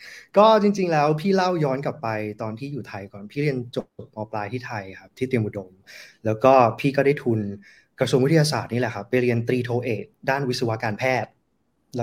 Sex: male